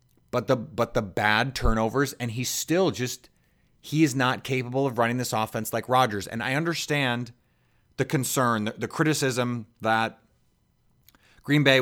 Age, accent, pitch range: 30-49, American, 120-150 Hz